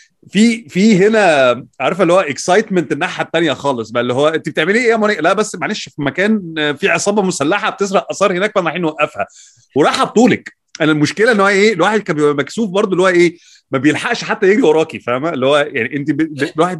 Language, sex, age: Arabic, male, 30-49